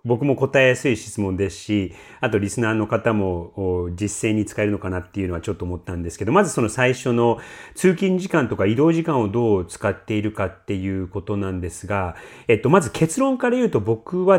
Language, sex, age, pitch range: Japanese, male, 30-49, 105-160 Hz